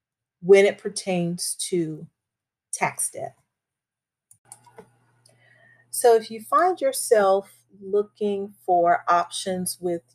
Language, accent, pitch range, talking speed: English, American, 150-200 Hz, 90 wpm